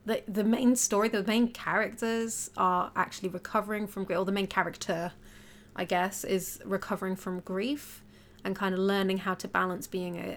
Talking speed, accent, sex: 180 wpm, British, female